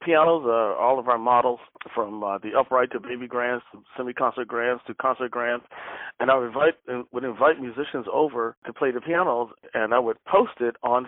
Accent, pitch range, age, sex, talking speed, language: American, 115-135 Hz, 40-59, male, 195 wpm, English